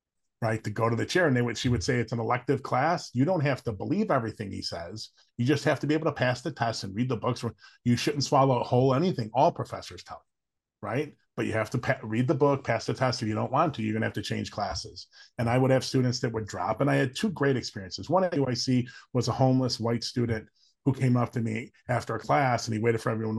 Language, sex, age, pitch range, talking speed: English, male, 30-49, 110-130 Hz, 275 wpm